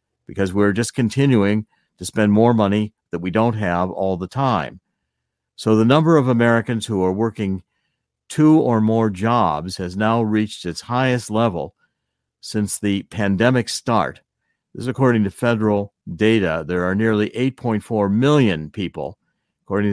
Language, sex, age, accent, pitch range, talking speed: English, male, 60-79, American, 95-120 Hz, 150 wpm